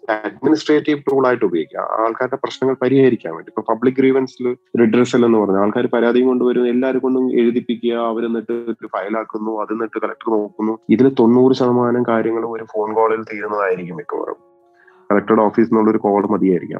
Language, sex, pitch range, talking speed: Malayalam, male, 110-130 Hz, 155 wpm